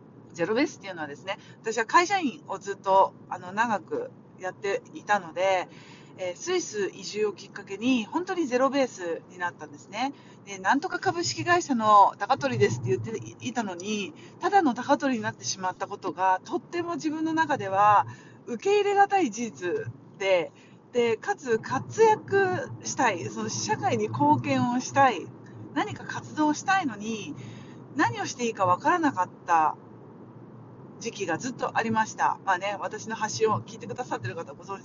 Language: Japanese